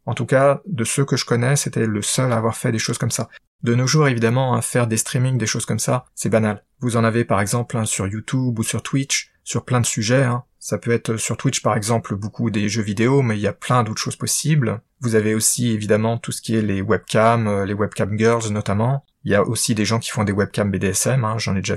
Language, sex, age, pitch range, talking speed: French, male, 30-49, 110-130 Hz, 260 wpm